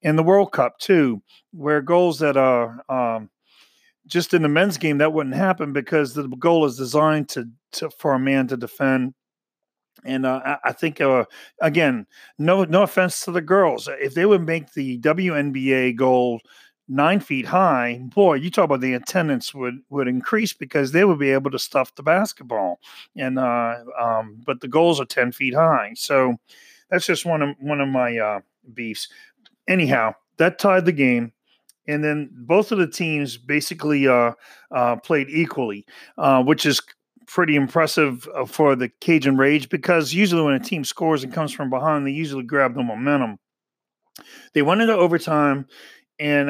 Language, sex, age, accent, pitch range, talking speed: English, male, 40-59, American, 130-170 Hz, 175 wpm